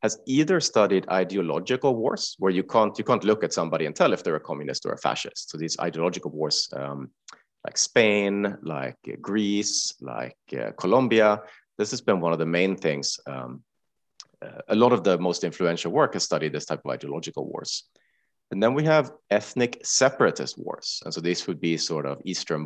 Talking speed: 195 wpm